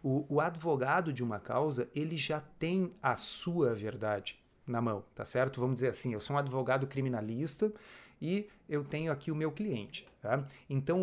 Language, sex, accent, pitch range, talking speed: Portuguese, male, Brazilian, 130-175 Hz, 170 wpm